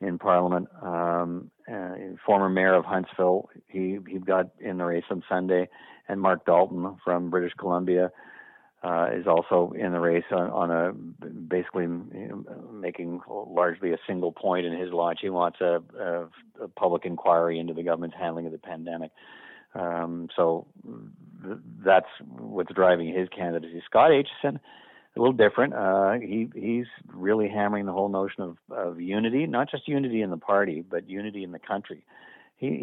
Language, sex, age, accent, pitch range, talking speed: English, male, 50-69, American, 85-95 Hz, 170 wpm